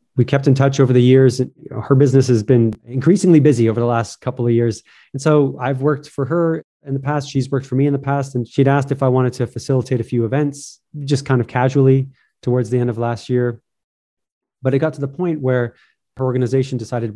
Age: 20-39